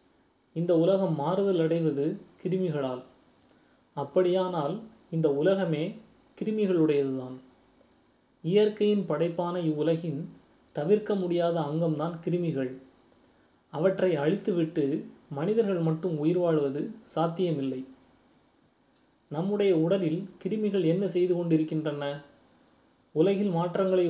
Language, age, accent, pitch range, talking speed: Tamil, 30-49, native, 150-185 Hz, 75 wpm